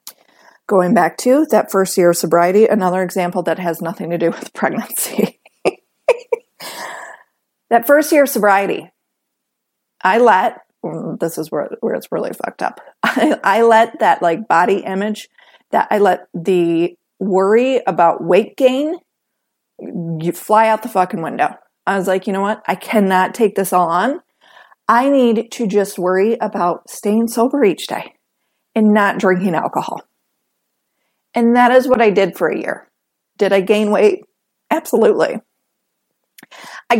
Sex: female